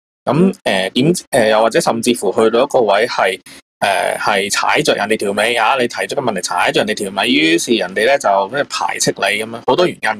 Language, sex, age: Chinese, male, 20-39